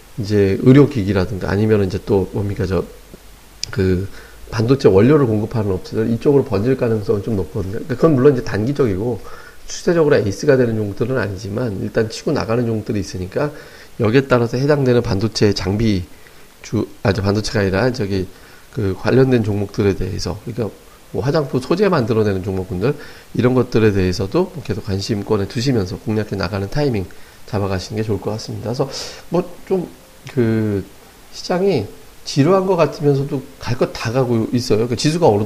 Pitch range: 100-130 Hz